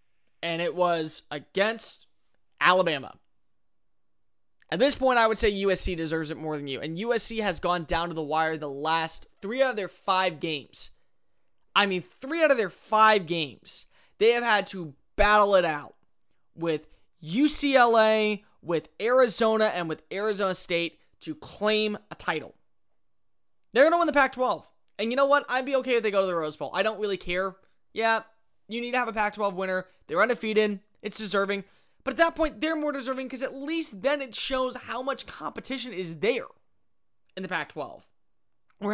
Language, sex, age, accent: English, male, 20-39, American